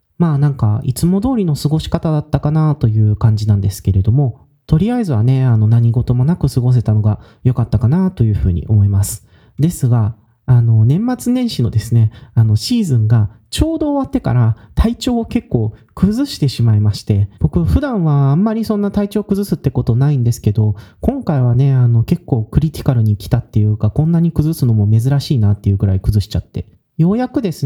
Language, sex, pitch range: Japanese, male, 110-155 Hz